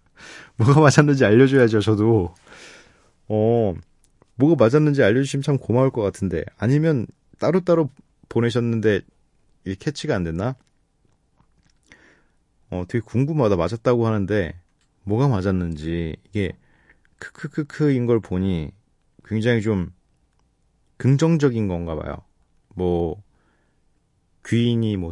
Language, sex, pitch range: Korean, male, 90-135 Hz